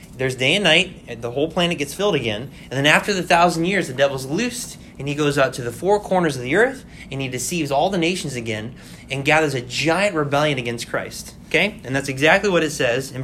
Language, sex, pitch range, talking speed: English, male, 135-195 Hz, 235 wpm